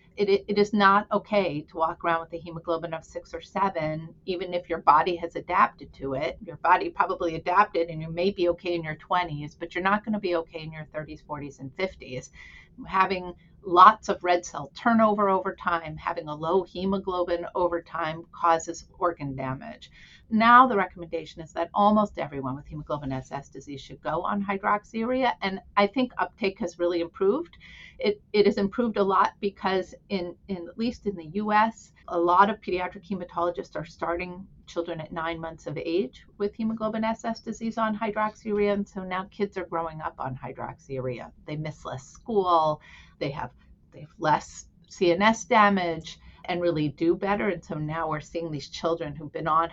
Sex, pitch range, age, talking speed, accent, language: female, 155-200 Hz, 40-59, 185 wpm, American, English